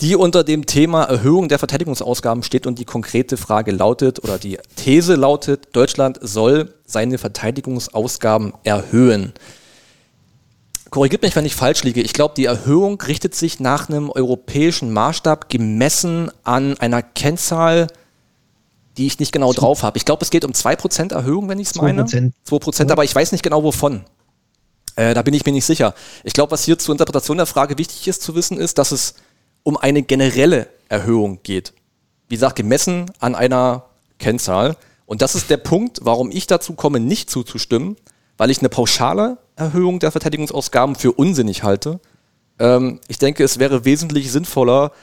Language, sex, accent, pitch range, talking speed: German, male, German, 125-160 Hz, 170 wpm